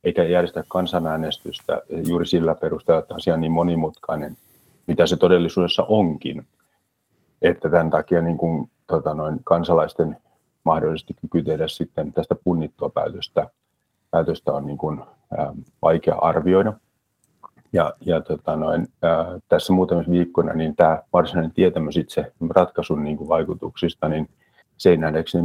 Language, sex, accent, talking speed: Finnish, male, native, 125 wpm